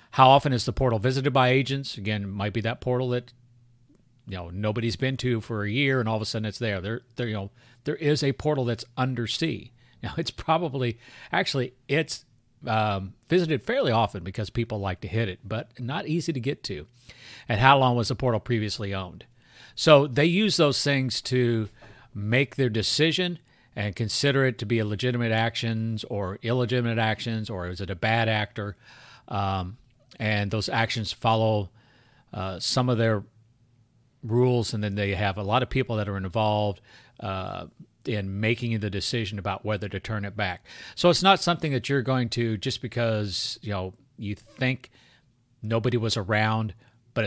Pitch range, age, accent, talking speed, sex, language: 105-125 Hz, 50-69, American, 185 wpm, male, English